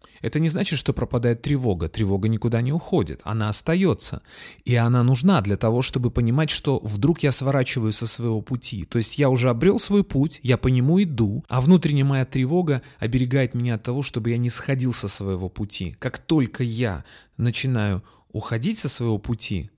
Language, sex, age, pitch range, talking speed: Russian, male, 30-49, 105-140 Hz, 180 wpm